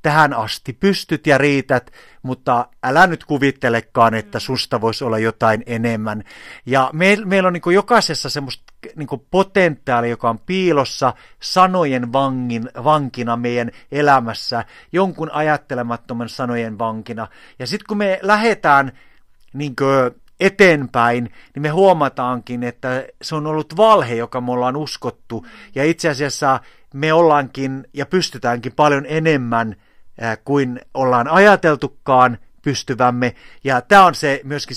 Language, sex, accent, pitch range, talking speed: Finnish, male, native, 120-155 Hz, 125 wpm